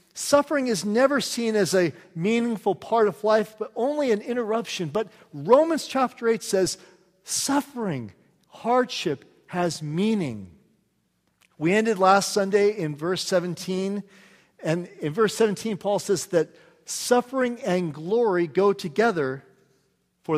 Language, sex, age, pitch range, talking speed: English, male, 40-59, 160-215 Hz, 125 wpm